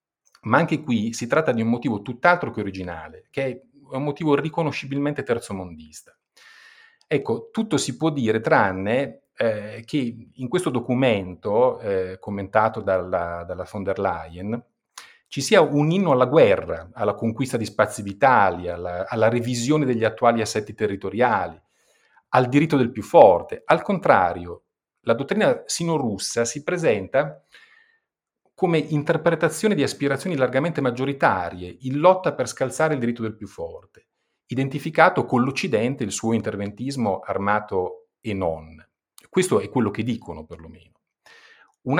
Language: Italian